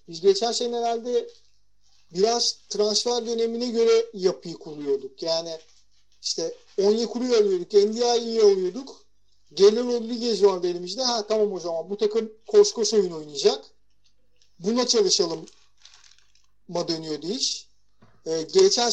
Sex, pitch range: male, 190-240 Hz